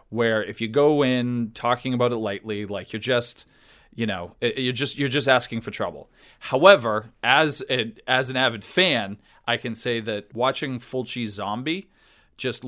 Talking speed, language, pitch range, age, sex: 170 wpm, English, 110-130 Hz, 30-49, male